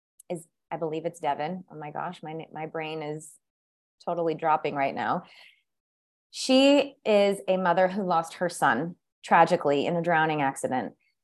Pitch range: 165-205 Hz